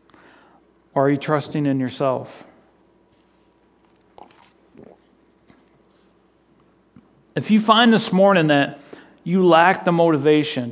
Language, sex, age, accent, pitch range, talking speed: English, male, 40-59, American, 135-160 Hz, 90 wpm